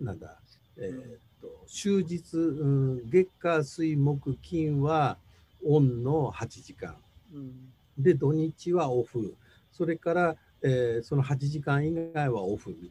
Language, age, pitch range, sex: Japanese, 60-79, 115-175 Hz, male